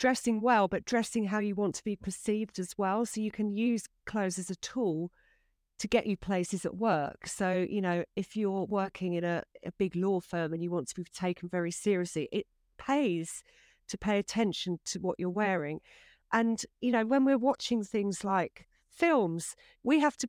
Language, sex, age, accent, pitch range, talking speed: English, female, 40-59, British, 180-225 Hz, 200 wpm